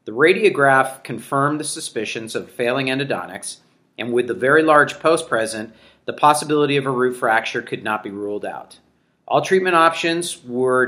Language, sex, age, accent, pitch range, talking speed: English, male, 40-59, American, 115-145 Hz, 165 wpm